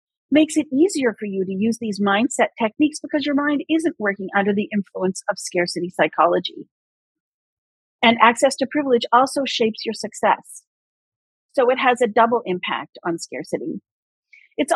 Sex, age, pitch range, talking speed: female, 40-59, 200-265 Hz, 155 wpm